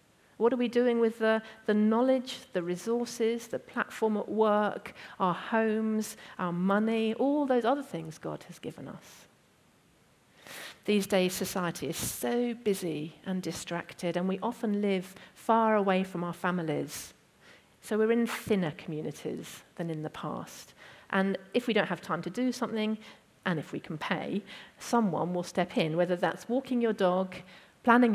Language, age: English, 40-59